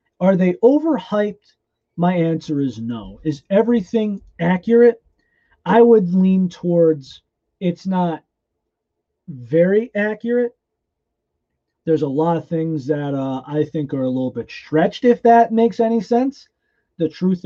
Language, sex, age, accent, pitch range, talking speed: English, male, 30-49, American, 130-195 Hz, 135 wpm